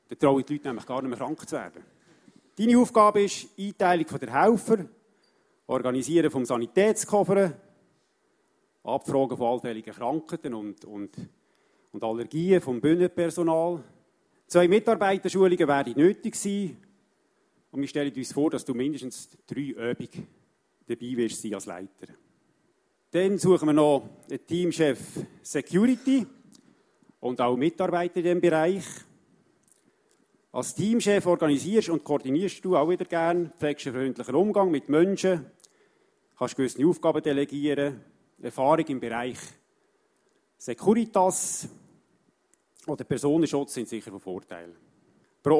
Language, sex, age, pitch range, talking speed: English, male, 40-59, 135-185 Hz, 120 wpm